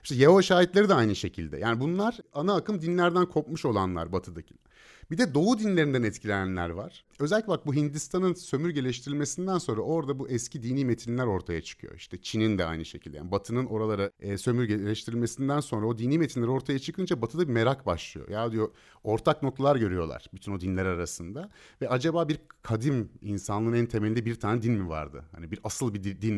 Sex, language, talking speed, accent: male, Turkish, 175 wpm, native